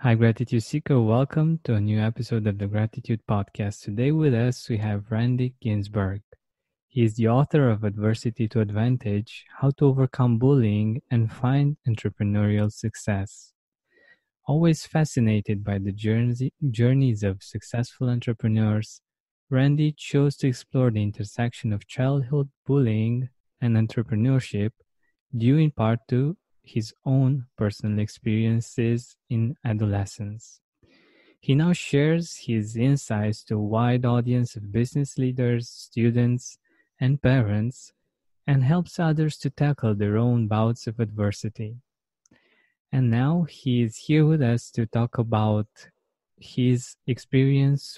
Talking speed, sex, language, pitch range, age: 125 wpm, male, English, 110-135 Hz, 20-39